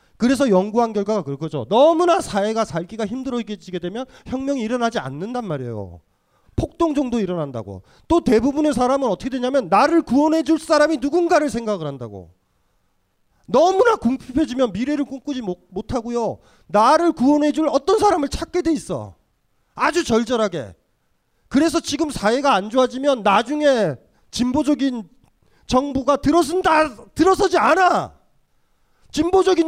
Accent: native